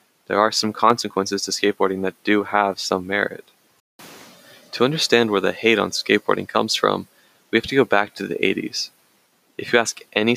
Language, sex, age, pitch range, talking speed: English, male, 20-39, 95-110 Hz, 185 wpm